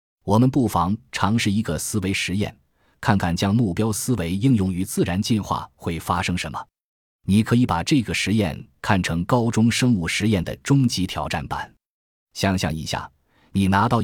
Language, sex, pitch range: Chinese, male, 85-115 Hz